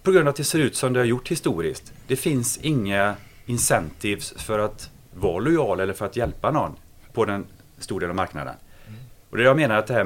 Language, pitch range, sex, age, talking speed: Swedish, 100-130 Hz, male, 30-49, 235 wpm